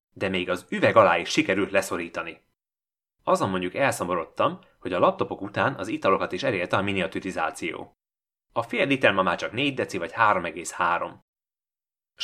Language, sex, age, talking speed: Hungarian, male, 30-49, 150 wpm